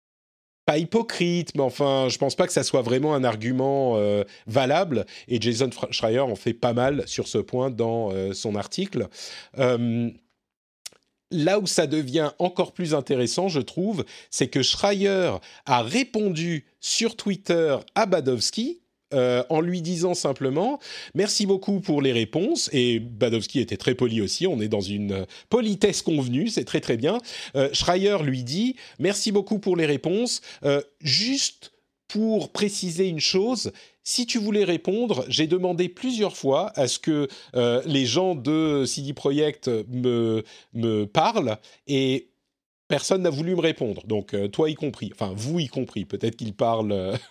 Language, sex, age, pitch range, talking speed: French, male, 40-59, 125-185 Hz, 160 wpm